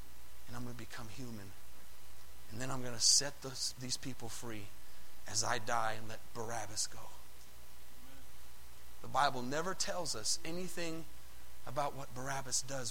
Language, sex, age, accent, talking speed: English, male, 30-49, American, 155 wpm